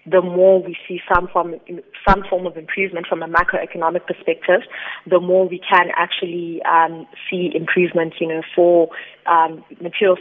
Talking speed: 160 wpm